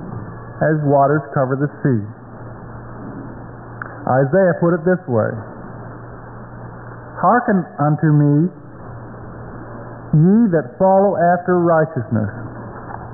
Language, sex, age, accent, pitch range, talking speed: English, male, 50-69, American, 125-185 Hz, 80 wpm